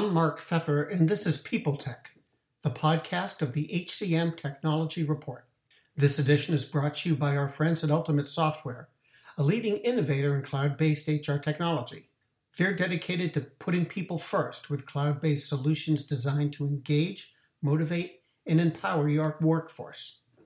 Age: 60-79